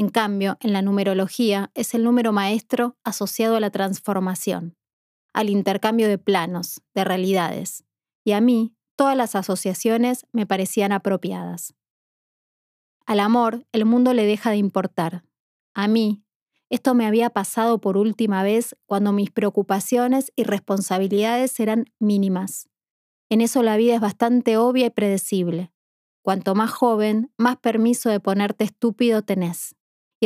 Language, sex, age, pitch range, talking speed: Spanish, female, 20-39, 195-230 Hz, 140 wpm